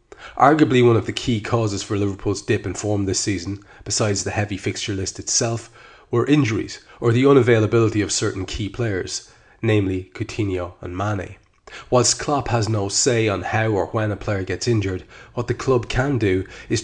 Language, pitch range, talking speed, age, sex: English, 100-120 Hz, 180 wpm, 30-49, male